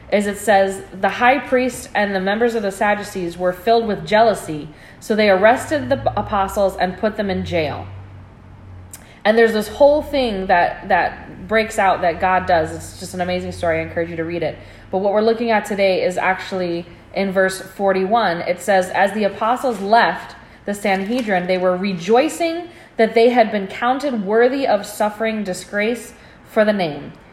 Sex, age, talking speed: female, 20-39, 180 wpm